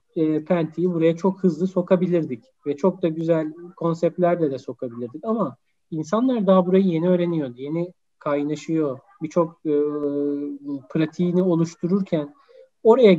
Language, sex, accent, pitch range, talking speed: Turkish, male, native, 160-210 Hz, 120 wpm